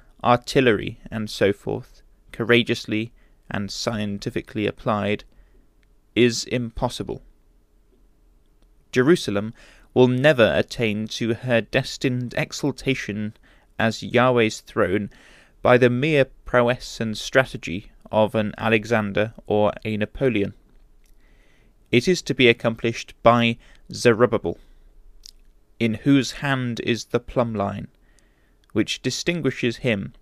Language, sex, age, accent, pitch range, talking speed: English, male, 20-39, British, 105-125 Hz, 100 wpm